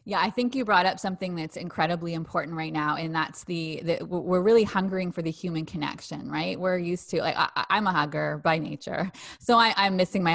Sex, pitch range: female, 160-195 Hz